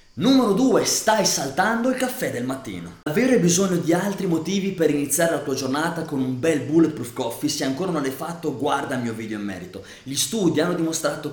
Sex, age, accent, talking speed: male, 30-49, native, 200 wpm